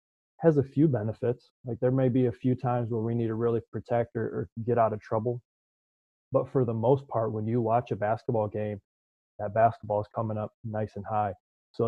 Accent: American